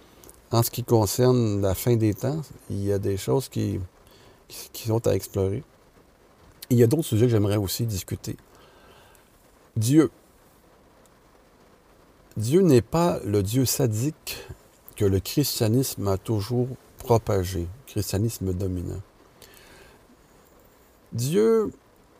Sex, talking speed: male, 120 wpm